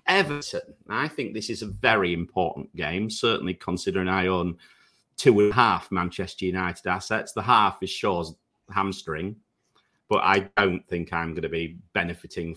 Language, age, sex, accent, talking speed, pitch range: English, 40-59, male, British, 160 wpm, 85-105 Hz